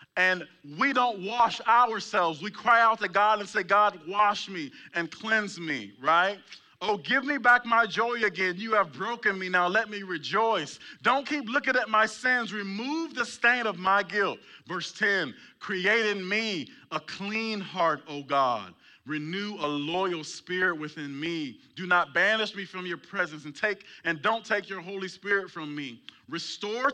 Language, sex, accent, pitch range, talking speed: English, male, American, 165-220 Hz, 180 wpm